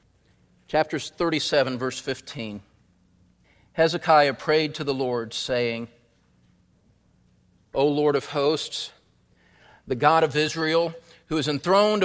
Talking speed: 105 wpm